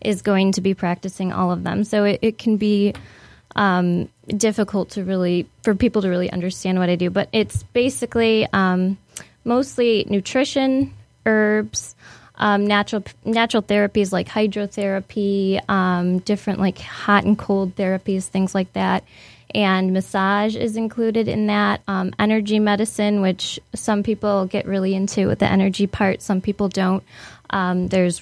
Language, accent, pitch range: English, American, 185-210 Hz